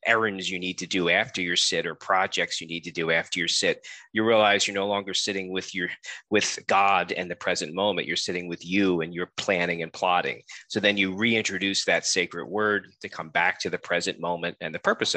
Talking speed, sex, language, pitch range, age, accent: 225 wpm, male, English, 90-110 Hz, 40-59, American